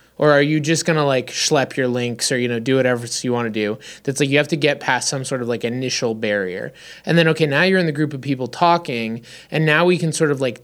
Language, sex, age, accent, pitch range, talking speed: English, male, 20-39, American, 120-155 Hz, 275 wpm